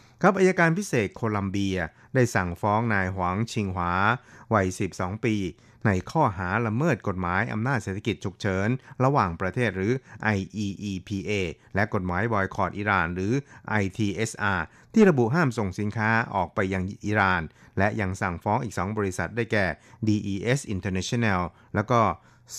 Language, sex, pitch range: Thai, male, 95-120 Hz